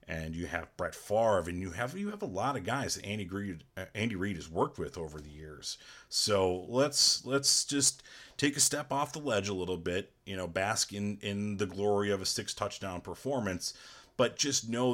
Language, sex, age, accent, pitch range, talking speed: English, male, 30-49, American, 85-105 Hz, 215 wpm